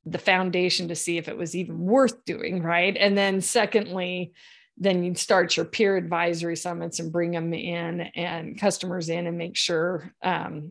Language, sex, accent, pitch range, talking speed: English, female, American, 170-200 Hz, 180 wpm